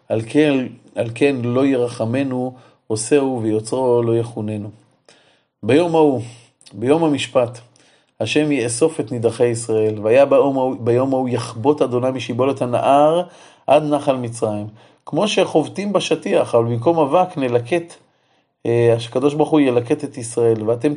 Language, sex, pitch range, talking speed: Hebrew, male, 115-145 Hz, 130 wpm